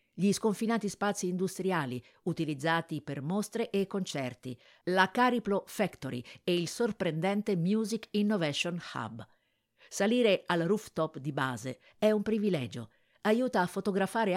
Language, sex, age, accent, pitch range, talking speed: Italian, female, 50-69, native, 145-200 Hz, 120 wpm